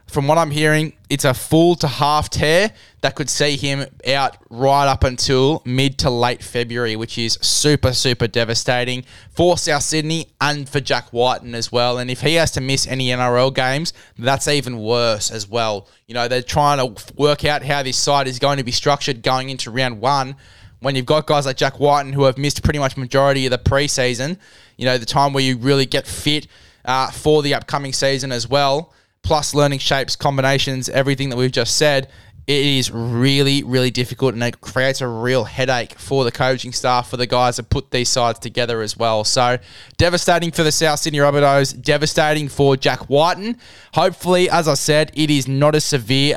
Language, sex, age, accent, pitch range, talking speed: English, male, 20-39, Australian, 125-145 Hz, 200 wpm